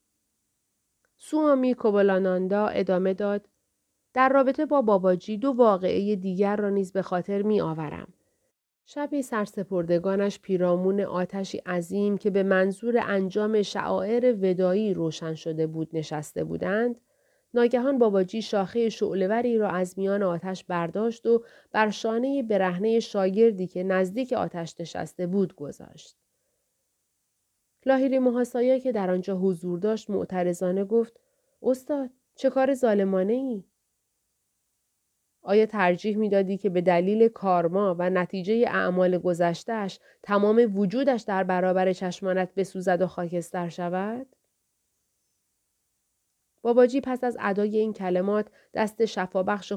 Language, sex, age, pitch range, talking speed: Persian, female, 30-49, 185-230 Hz, 115 wpm